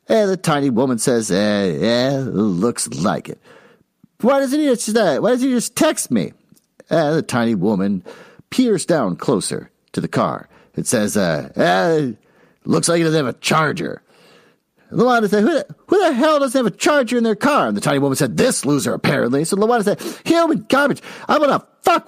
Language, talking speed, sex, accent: English, 205 wpm, male, American